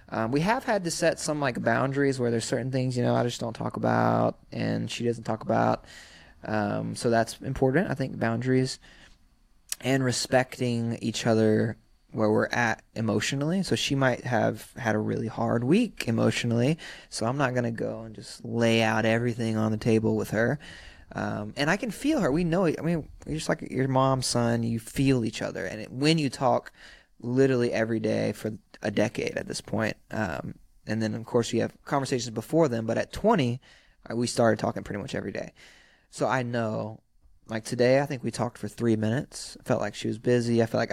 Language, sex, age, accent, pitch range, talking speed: English, male, 20-39, American, 110-135 Hz, 210 wpm